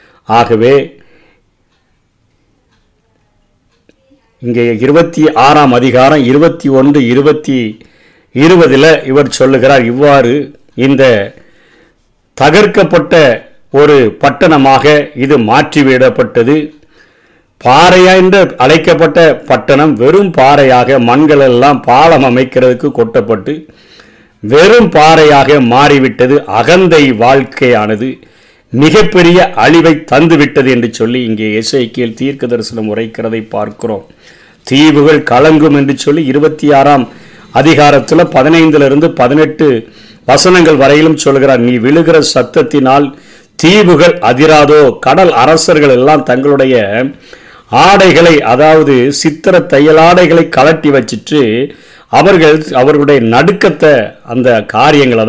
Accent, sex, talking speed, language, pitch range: native, male, 85 wpm, Tamil, 125-155 Hz